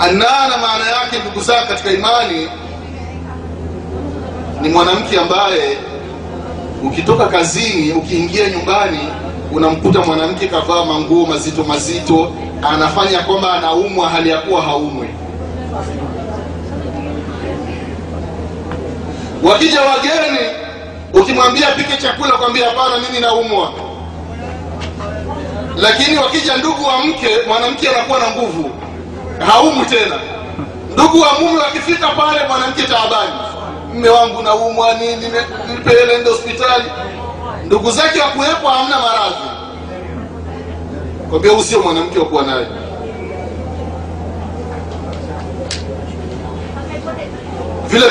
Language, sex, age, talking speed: Swahili, male, 30-49, 85 wpm